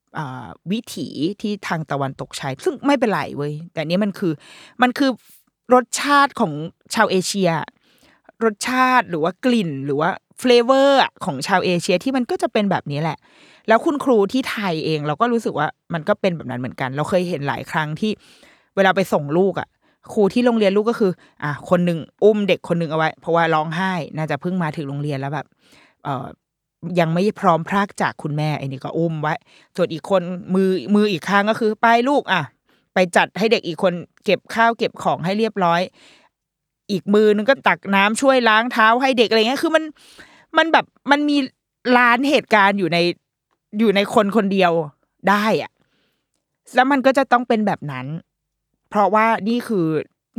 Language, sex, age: Thai, female, 20-39